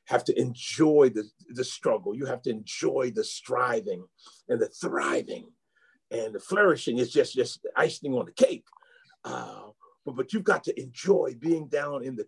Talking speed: 180 wpm